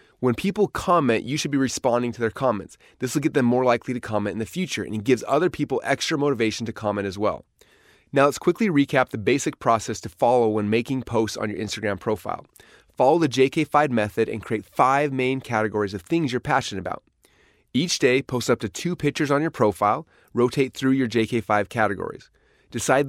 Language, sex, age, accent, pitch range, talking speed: English, male, 30-49, American, 110-140 Hz, 205 wpm